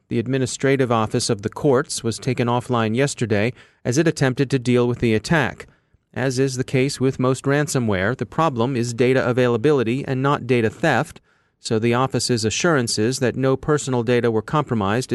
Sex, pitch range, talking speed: male, 115-140 Hz, 175 wpm